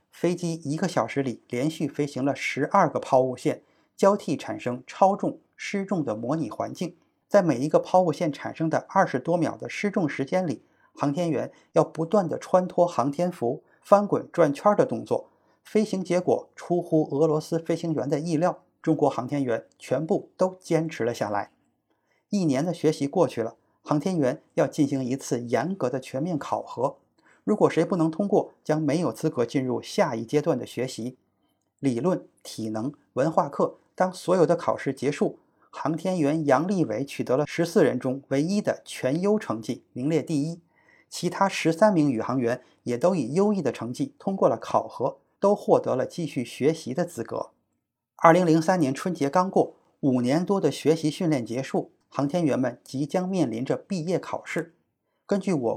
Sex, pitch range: male, 135-180 Hz